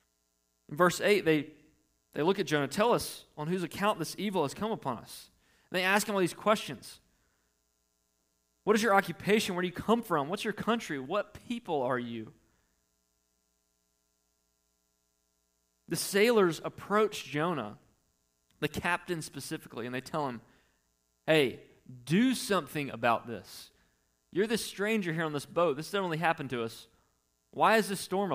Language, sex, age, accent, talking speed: English, male, 20-39, American, 160 wpm